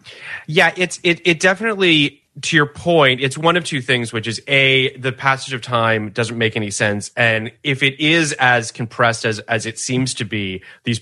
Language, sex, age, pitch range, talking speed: English, male, 30-49, 110-145 Hz, 200 wpm